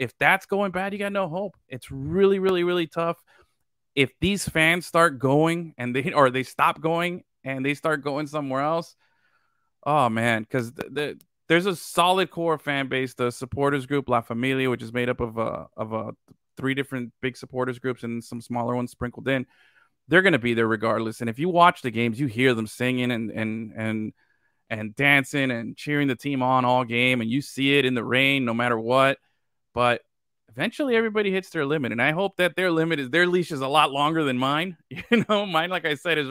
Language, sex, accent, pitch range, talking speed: English, male, American, 120-160 Hz, 215 wpm